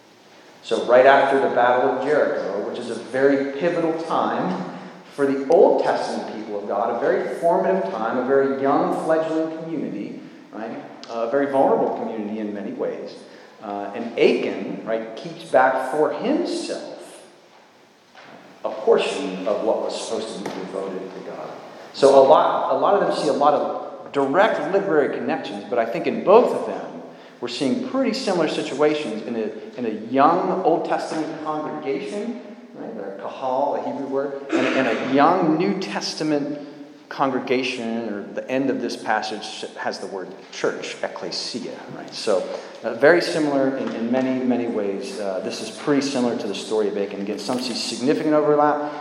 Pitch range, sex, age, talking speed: 125-195 Hz, male, 40-59, 170 wpm